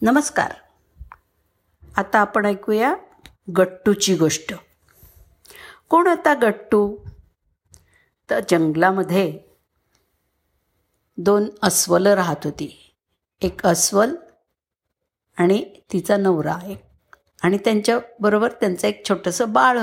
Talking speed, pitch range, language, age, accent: 80 wpm, 170-245 Hz, Marathi, 50-69, native